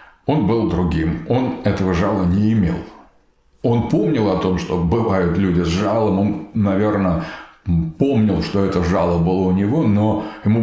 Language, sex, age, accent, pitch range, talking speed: Russian, male, 50-69, native, 90-115 Hz, 160 wpm